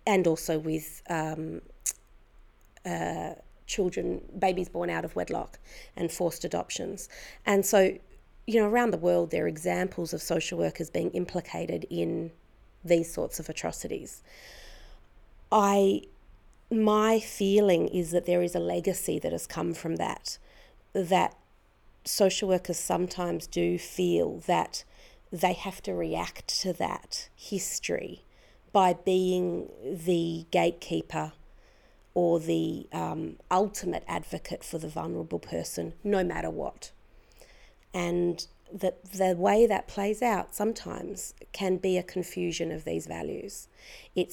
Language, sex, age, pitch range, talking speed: English, female, 40-59, 165-190 Hz, 125 wpm